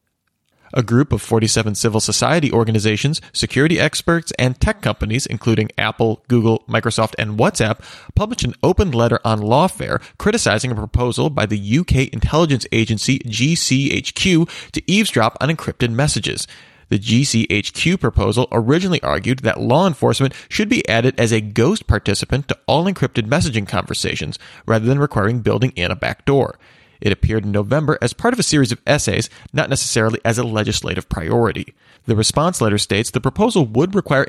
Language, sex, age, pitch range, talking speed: English, male, 30-49, 110-145 Hz, 155 wpm